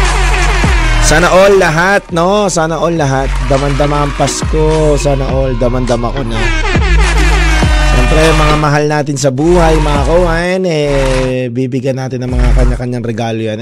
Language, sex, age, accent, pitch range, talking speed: Filipino, male, 20-39, native, 130-160 Hz, 135 wpm